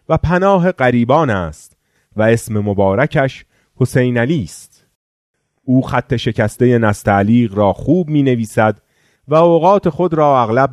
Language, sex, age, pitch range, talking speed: Persian, male, 30-49, 100-150 Hz, 130 wpm